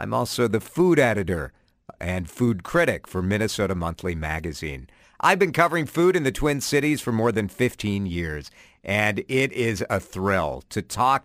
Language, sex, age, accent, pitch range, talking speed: English, male, 50-69, American, 90-140 Hz, 170 wpm